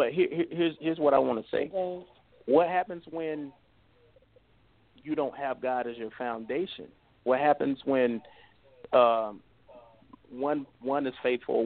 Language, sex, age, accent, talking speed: English, male, 30-49, American, 140 wpm